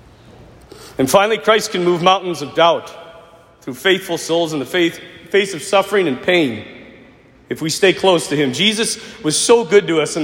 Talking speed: 180 wpm